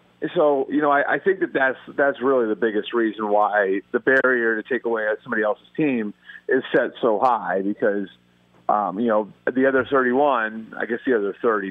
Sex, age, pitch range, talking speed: male, 40-59, 105-140 Hz, 200 wpm